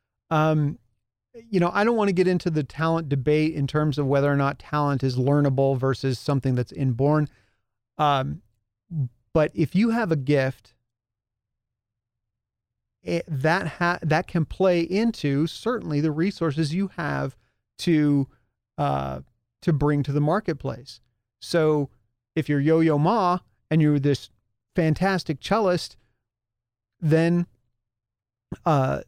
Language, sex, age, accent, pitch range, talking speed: English, male, 40-59, American, 120-170 Hz, 125 wpm